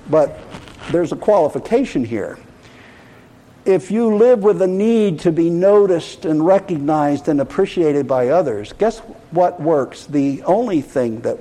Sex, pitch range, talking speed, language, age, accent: male, 125-195 Hz, 140 wpm, English, 60-79, American